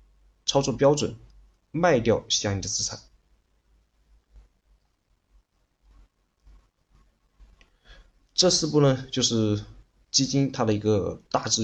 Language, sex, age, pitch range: Chinese, male, 20-39, 100-120 Hz